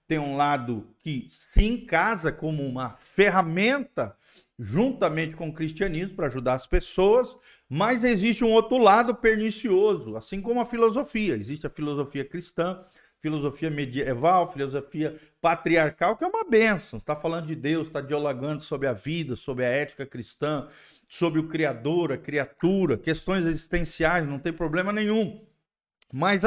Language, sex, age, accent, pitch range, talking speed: Portuguese, male, 50-69, Brazilian, 145-205 Hz, 145 wpm